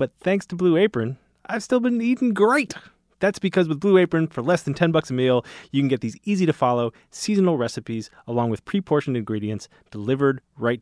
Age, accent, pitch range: 30-49, American, 120-165 Hz